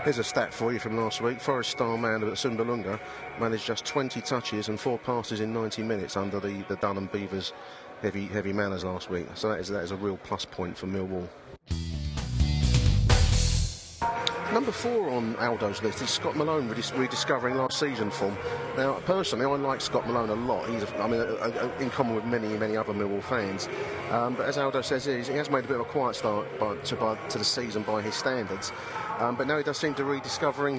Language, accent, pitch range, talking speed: English, British, 105-130 Hz, 215 wpm